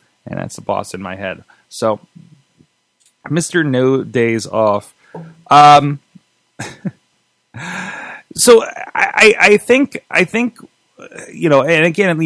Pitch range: 115-145 Hz